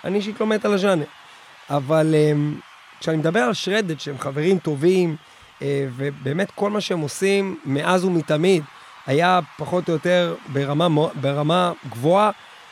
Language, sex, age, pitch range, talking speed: Hebrew, male, 30-49, 160-215 Hz, 125 wpm